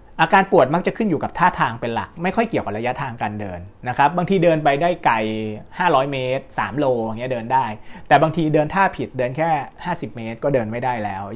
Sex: male